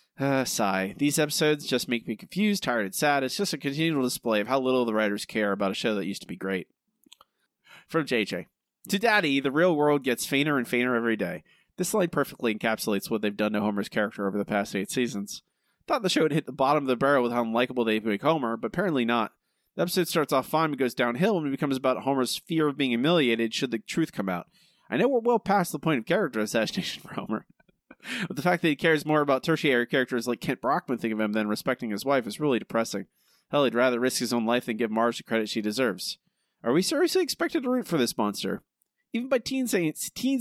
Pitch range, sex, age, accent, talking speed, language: 115-160 Hz, male, 30-49, American, 240 wpm, English